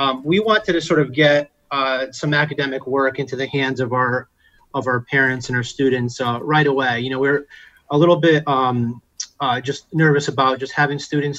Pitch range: 125-140 Hz